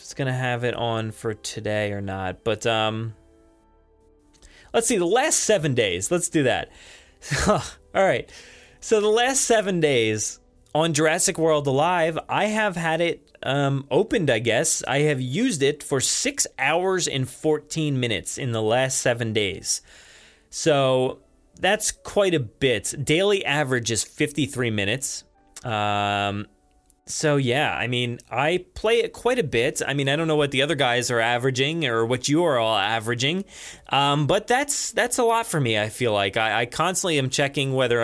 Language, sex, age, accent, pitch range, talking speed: English, male, 30-49, American, 115-160 Hz, 170 wpm